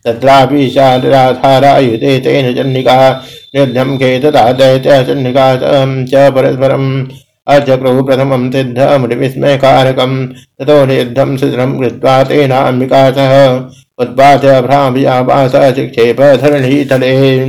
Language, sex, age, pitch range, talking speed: Hindi, male, 60-79, 130-135 Hz, 40 wpm